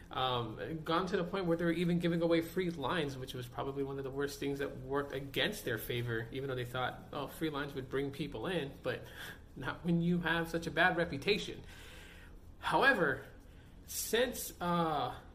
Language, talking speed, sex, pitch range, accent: English, 190 wpm, male, 130-165 Hz, American